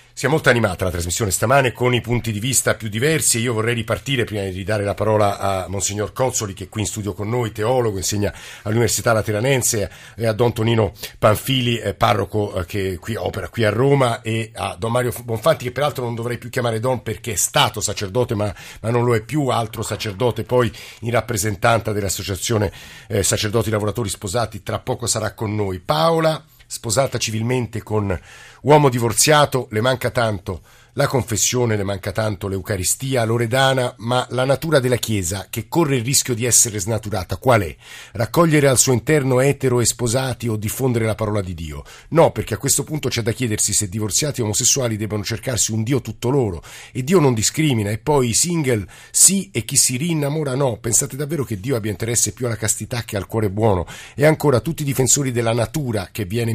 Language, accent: Italian, native